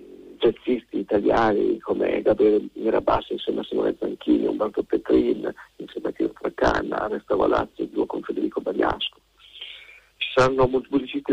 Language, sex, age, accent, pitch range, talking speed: Italian, male, 50-69, native, 345-430 Hz, 140 wpm